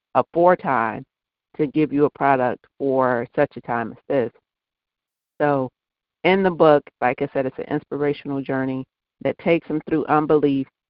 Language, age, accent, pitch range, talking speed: English, 50-69, American, 135-155 Hz, 160 wpm